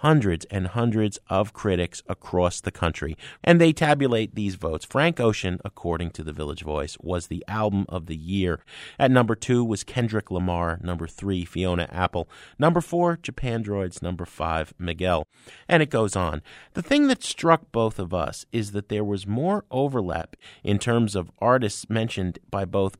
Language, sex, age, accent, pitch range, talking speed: English, male, 40-59, American, 90-125 Hz, 175 wpm